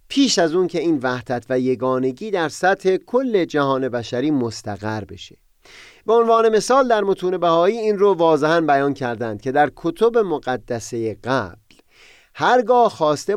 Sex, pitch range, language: male, 120-195 Hz, Persian